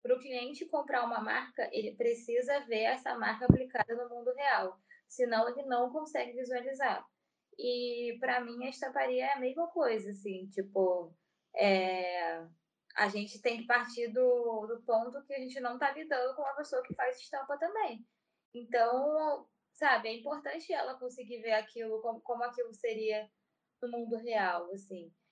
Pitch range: 215-270 Hz